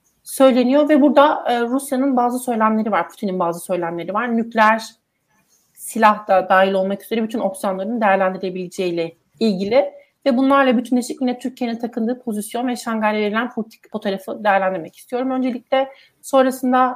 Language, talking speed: Turkish, 140 wpm